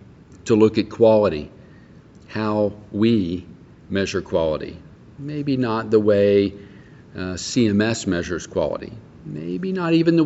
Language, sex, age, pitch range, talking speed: English, male, 50-69, 90-110 Hz, 110 wpm